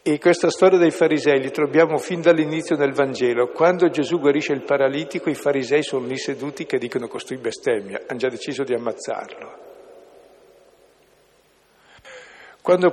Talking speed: 145 wpm